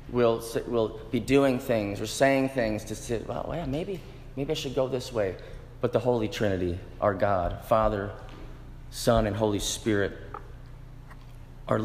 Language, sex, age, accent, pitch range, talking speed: English, male, 30-49, American, 115-135 Hz, 155 wpm